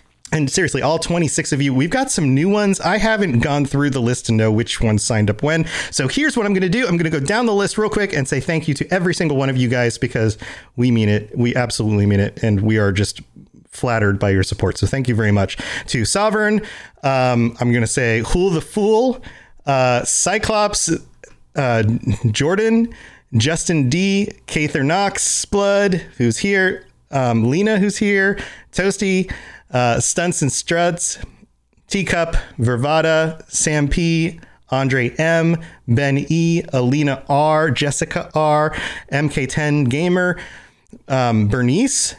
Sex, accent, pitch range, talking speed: male, American, 120-175 Hz, 165 wpm